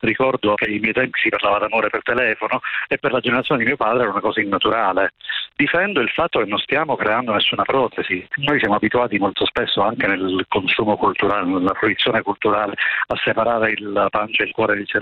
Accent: native